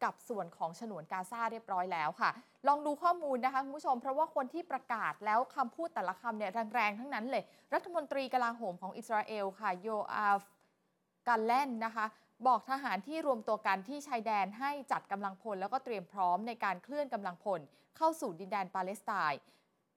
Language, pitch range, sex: Thai, 195-265 Hz, female